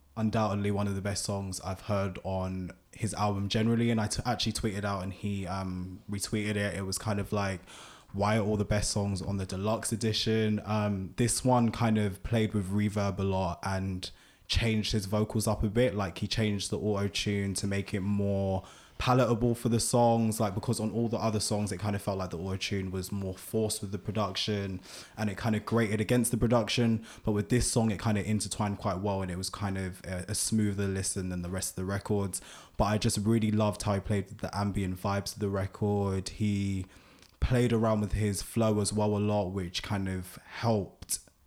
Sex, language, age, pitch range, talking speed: male, English, 20-39, 95-110 Hz, 215 wpm